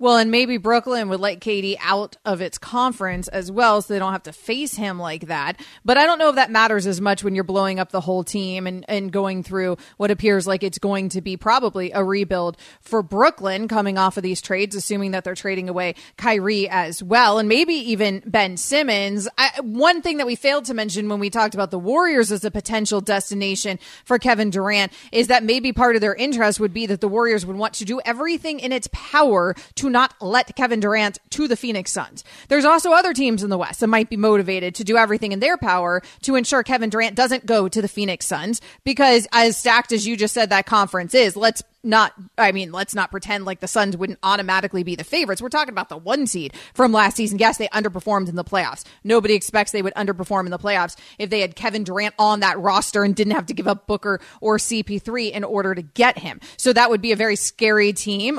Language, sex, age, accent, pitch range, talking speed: English, female, 30-49, American, 195-240 Hz, 230 wpm